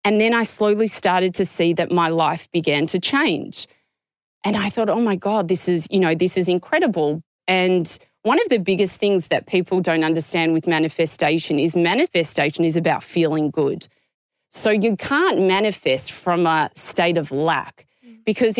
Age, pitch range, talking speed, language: 30-49, 165-205 Hz, 175 wpm, English